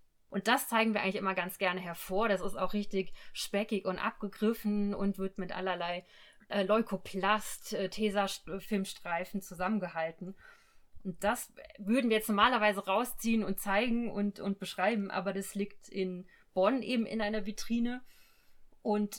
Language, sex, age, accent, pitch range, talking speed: German, female, 30-49, German, 185-210 Hz, 140 wpm